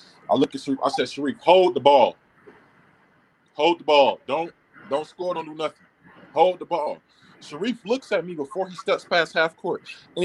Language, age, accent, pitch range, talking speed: English, 20-39, American, 140-190 Hz, 195 wpm